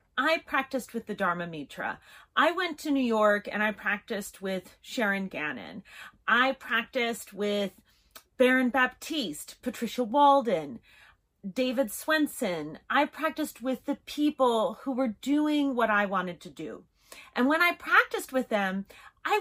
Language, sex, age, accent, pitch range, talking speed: English, female, 30-49, American, 215-300 Hz, 140 wpm